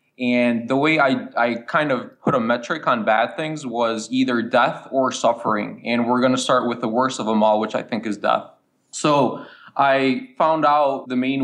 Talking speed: 210 wpm